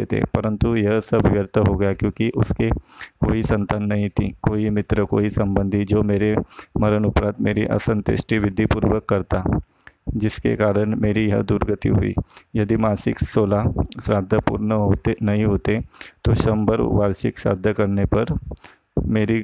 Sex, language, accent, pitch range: male, Hindi, native, 100-110 Hz